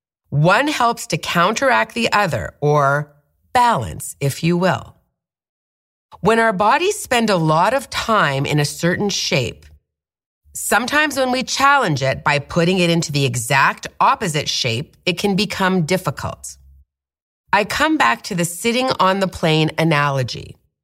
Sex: female